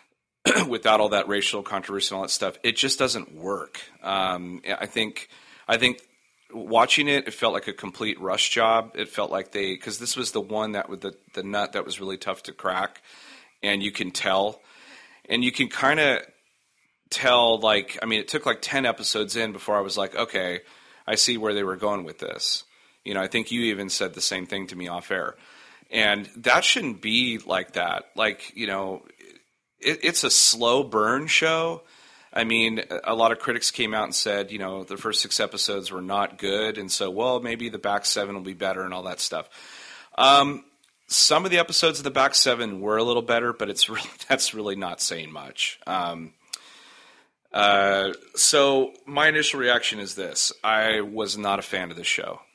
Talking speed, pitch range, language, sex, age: 200 wpm, 95-120 Hz, English, male, 30-49